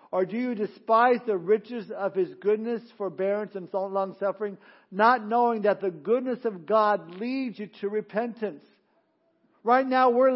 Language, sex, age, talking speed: English, male, 50-69, 150 wpm